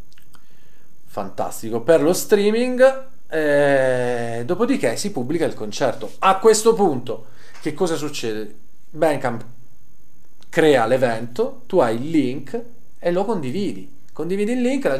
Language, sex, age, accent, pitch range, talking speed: Italian, male, 40-59, native, 120-180 Hz, 120 wpm